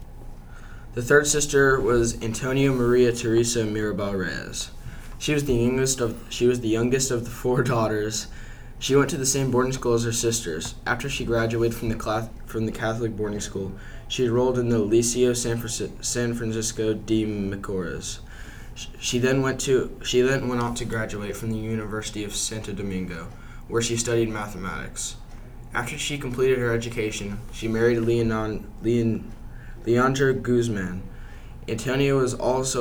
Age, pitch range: 10-29, 110-125 Hz